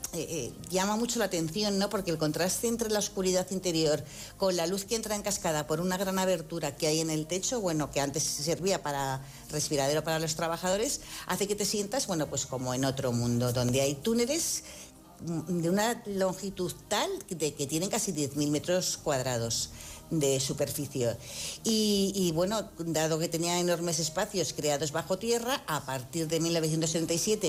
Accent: Spanish